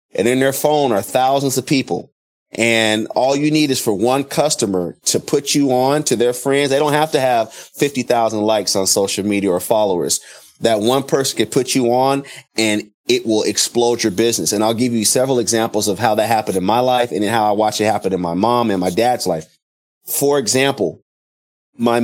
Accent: American